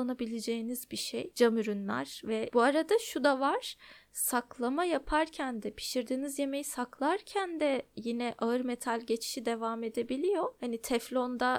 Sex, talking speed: female, 135 wpm